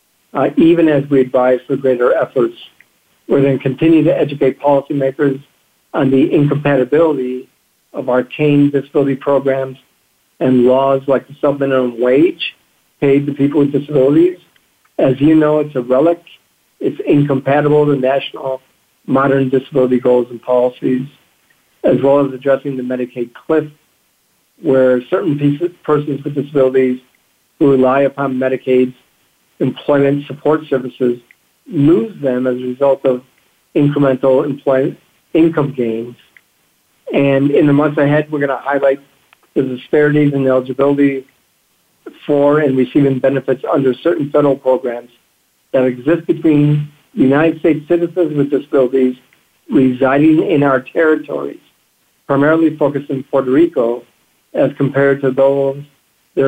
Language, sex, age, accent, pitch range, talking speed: English, male, 50-69, American, 130-145 Hz, 130 wpm